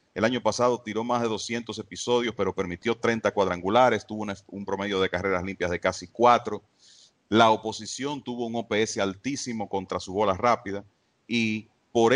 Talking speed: 165 wpm